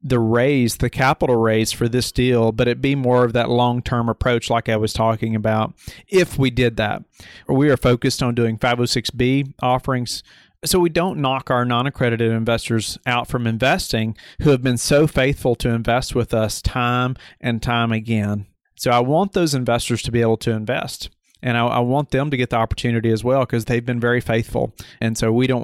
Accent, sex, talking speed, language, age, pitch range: American, male, 200 wpm, English, 40-59, 115-135 Hz